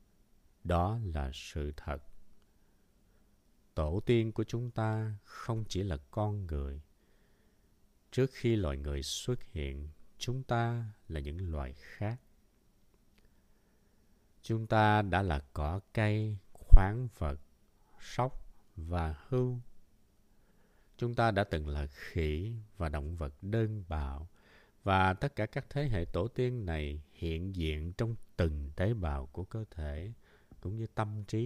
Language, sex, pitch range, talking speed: Vietnamese, male, 80-110 Hz, 135 wpm